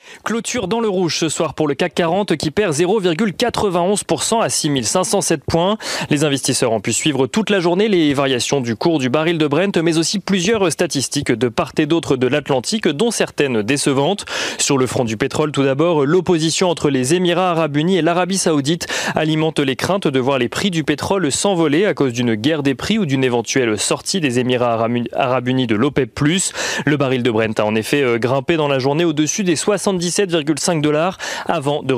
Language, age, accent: French, 30-49, French